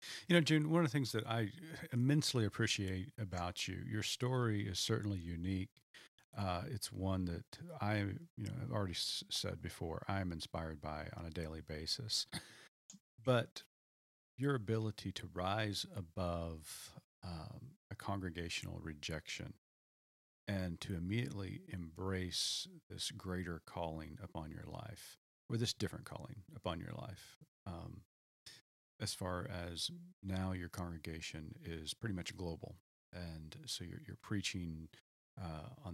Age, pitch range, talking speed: 40-59, 85-110 Hz, 135 wpm